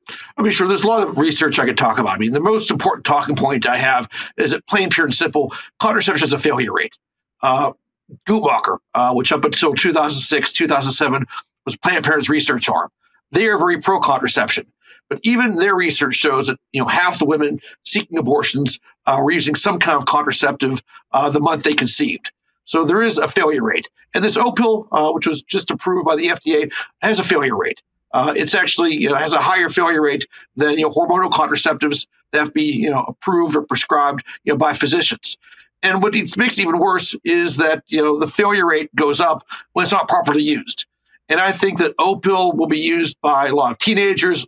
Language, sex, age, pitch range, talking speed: English, male, 50-69, 150-210 Hz, 210 wpm